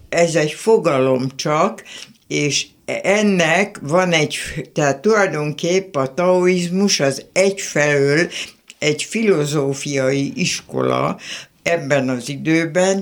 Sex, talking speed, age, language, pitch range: female, 90 wpm, 60-79, Hungarian, 135-175 Hz